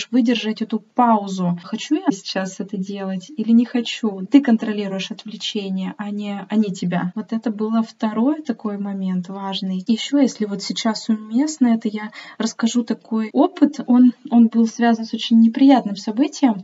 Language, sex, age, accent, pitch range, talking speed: Russian, female, 20-39, native, 210-240 Hz, 160 wpm